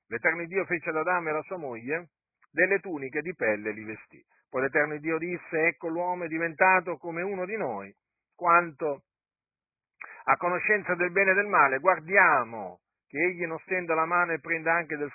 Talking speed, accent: 185 wpm, native